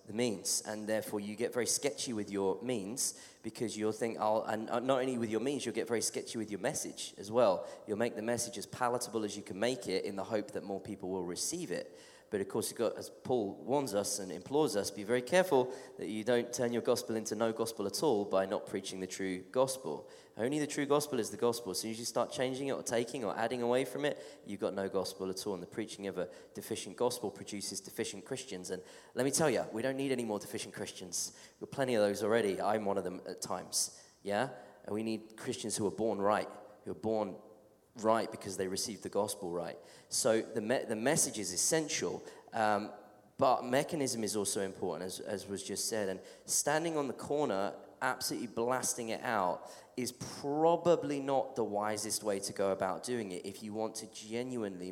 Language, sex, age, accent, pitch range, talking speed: English, male, 20-39, British, 100-125 Hz, 225 wpm